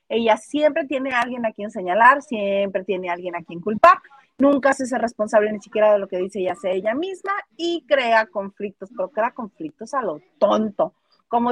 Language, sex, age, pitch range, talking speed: Spanish, female, 30-49, 205-295 Hz, 195 wpm